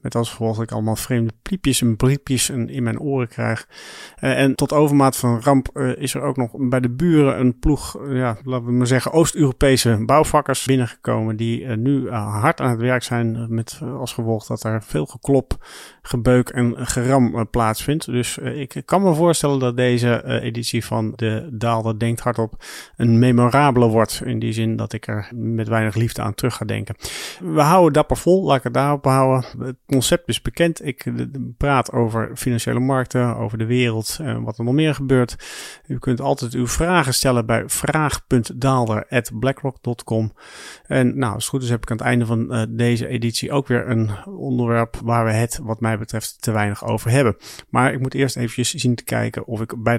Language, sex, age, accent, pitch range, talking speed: Dutch, male, 40-59, Dutch, 115-135 Hz, 190 wpm